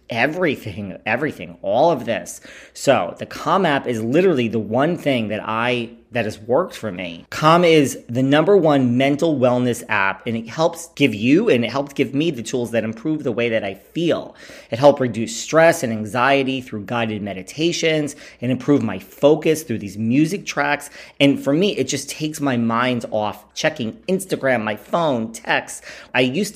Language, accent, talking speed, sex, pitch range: English, American, 185 wpm, male, 115-150 Hz